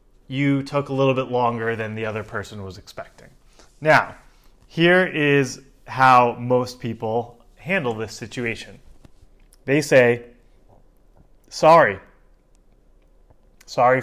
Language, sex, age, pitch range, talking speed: English, male, 30-49, 110-145 Hz, 105 wpm